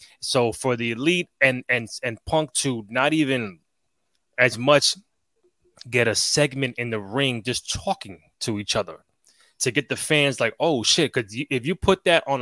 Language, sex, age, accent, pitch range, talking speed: English, male, 20-39, American, 115-145 Hz, 180 wpm